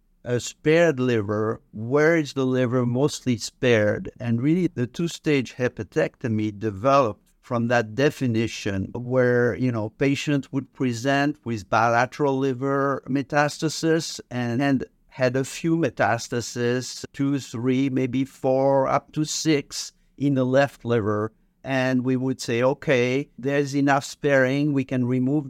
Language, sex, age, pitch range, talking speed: English, male, 50-69, 115-140 Hz, 130 wpm